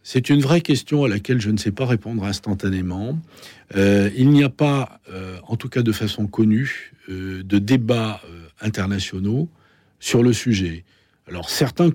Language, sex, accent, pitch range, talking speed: French, male, French, 100-135 Hz, 170 wpm